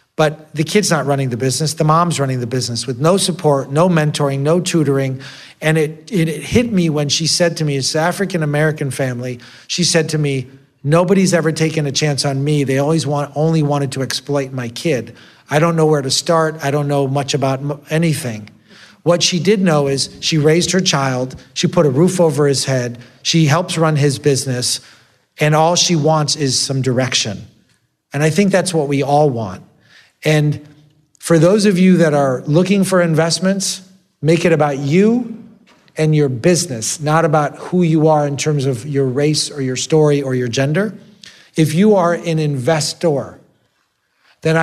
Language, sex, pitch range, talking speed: English, male, 140-165 Hz, 190 wpm